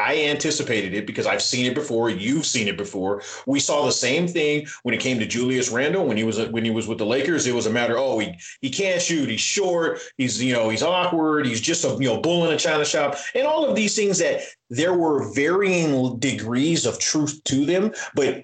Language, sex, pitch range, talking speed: English, male, 115-150 Hz, 240 wpm